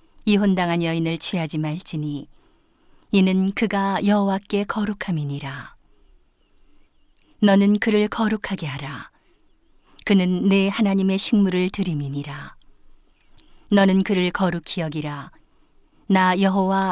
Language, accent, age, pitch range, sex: Korean, native, 40-59, 165-205 Hz, female